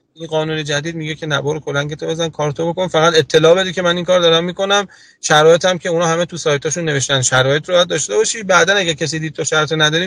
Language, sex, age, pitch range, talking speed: Persian, male, 30-49, 140-165 Hz, 225 wpm